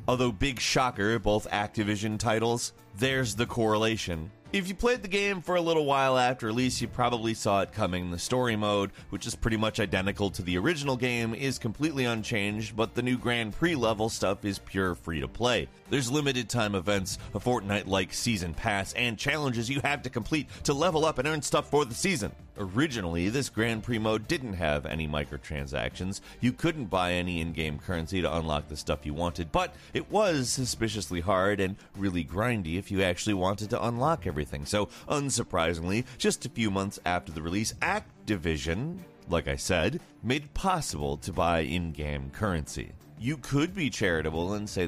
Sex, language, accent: male, Finnish, American